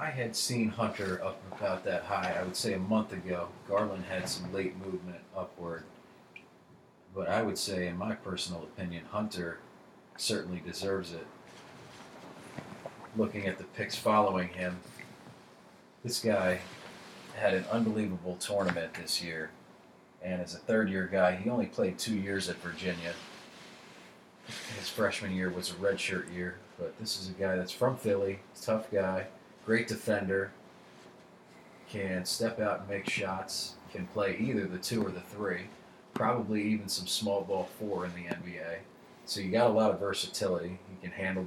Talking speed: 160 wpm